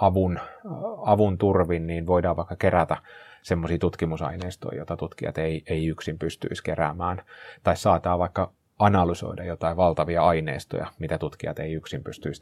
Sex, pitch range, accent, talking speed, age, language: male, 85-100 Hz, native, 135 wpm, 30-49, Finnish